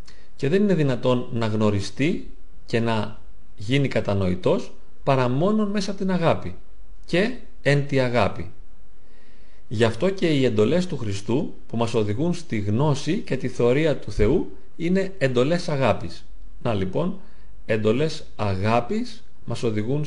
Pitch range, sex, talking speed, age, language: 105-165 Hz, male, 135 wpm, 40-59, Greek